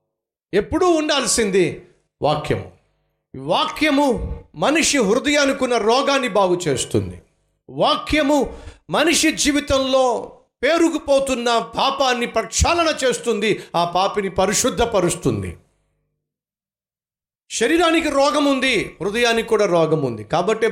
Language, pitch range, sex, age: Telugu, 160-265 Hz, male, 50-69